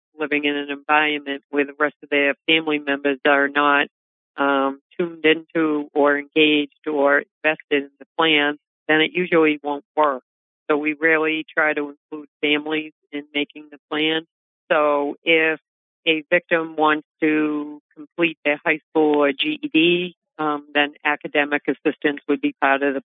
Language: English